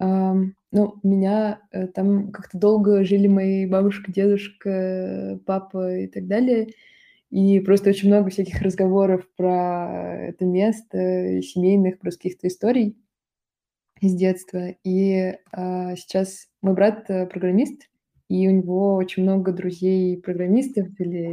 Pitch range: 180-200 Hz